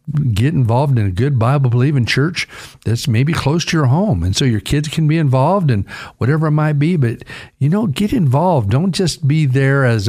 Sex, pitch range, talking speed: male, 105-145 Hz, 210 wpm